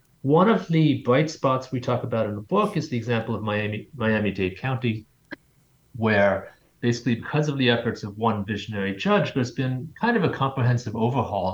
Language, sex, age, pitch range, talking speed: English, male, 30-49, 100-130 Hz, 185 wpm